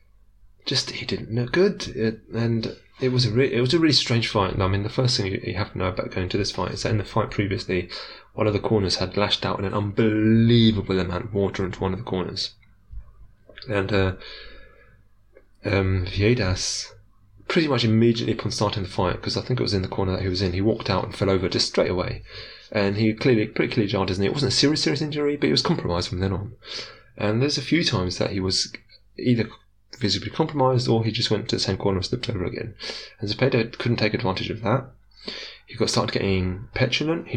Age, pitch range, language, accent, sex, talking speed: 20-39, 100-125 Hz, English, British, male, 235 wpm